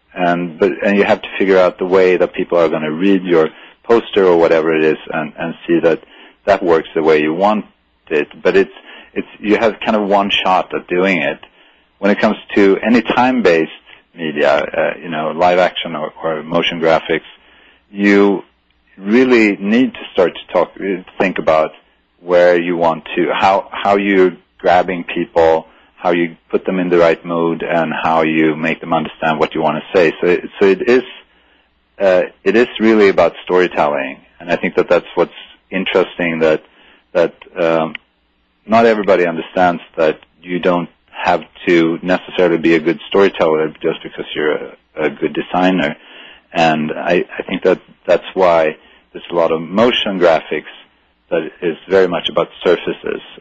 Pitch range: 80-95 Hz